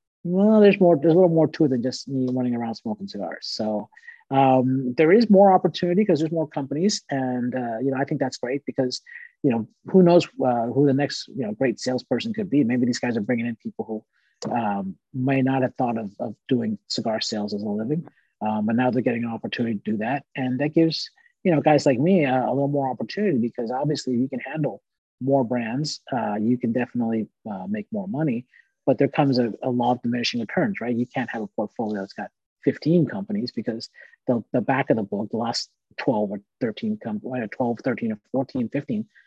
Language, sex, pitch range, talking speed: English, male, 120-165 Hz, 220 wpm